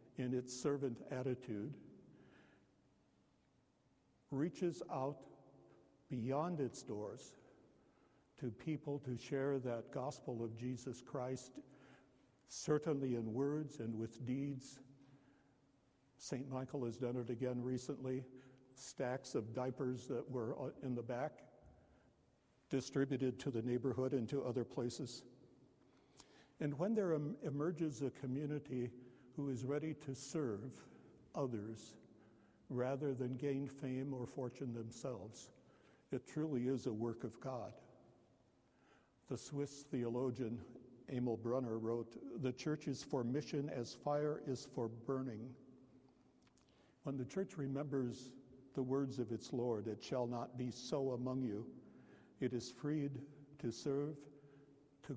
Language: English